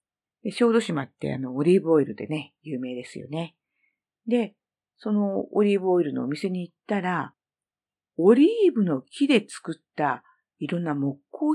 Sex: female